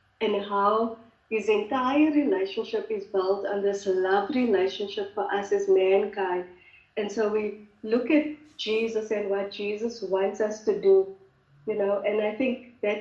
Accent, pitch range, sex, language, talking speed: Indian, 195-235 Hz, female, English, 155 wpm